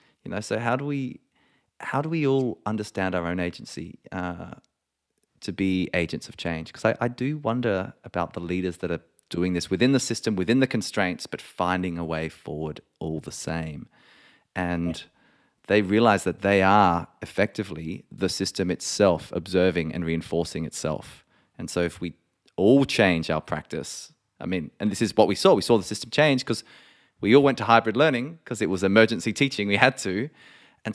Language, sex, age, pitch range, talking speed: English, male, 30-49, 85-115 Hz, 190 wpm